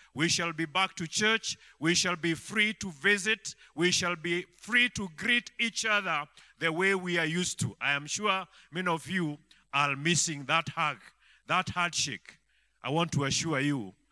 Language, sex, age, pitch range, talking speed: English, male, 50-69, 160-220 Hz, 185 wpm